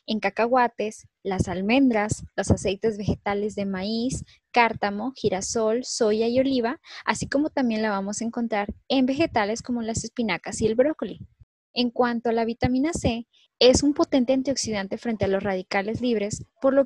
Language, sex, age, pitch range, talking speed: Spanish, female, 10-29, 205-255 Hz, 165 wpm